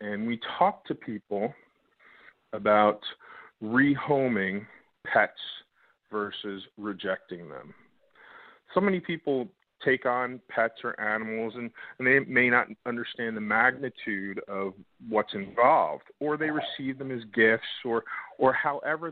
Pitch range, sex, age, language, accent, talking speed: 105-135 Hz, male, 40-59, English, American, 120 wpm